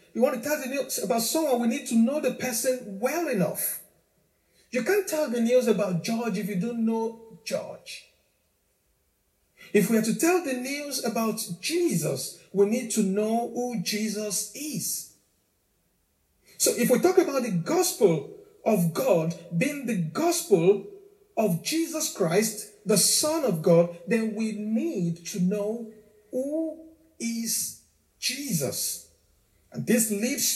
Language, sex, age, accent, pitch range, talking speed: English, male, 50-69, Nigerian, 175-255 Hz, 145 wpm